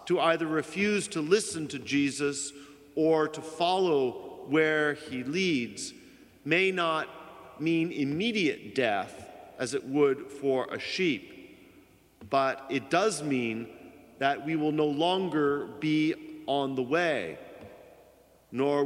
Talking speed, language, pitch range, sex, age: 120 wpm, English, 125-165 Hz, male, 50-69